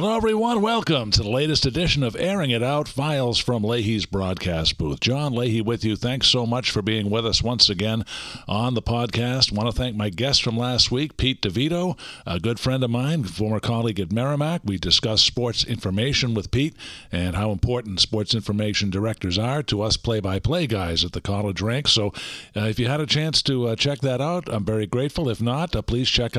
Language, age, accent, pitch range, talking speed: English, 50-69, American, 100-125 Hz, 210 wpm